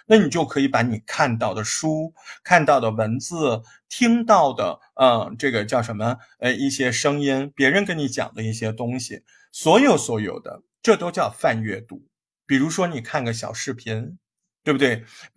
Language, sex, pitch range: Chinese, male, 115-170 Hz